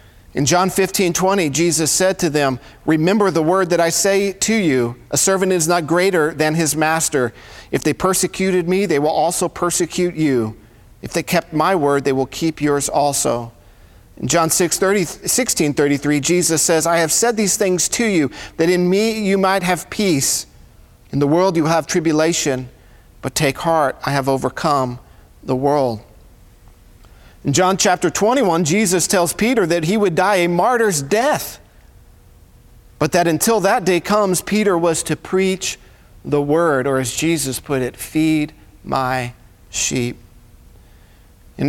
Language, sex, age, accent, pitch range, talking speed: English, male, 40-59, American, 130-180 Hz, 165 wpm